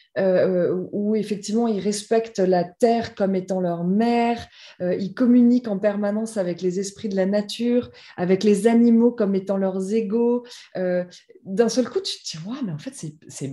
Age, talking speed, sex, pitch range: 20-39, 185 wpm, female, 200-275 Hz